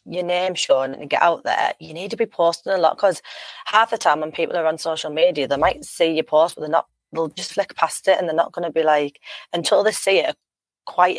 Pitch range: 150-180 Hz